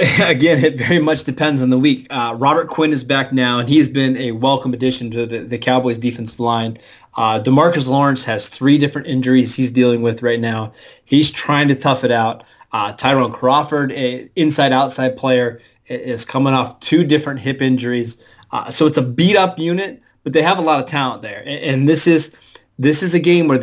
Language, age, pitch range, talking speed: English, 20-39, 125-145 Hz, 200 wpm